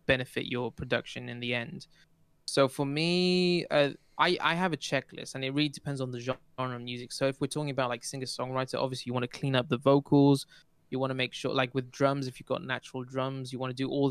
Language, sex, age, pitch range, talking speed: English, male, 20-39, 125-145 Hz, 245 wpm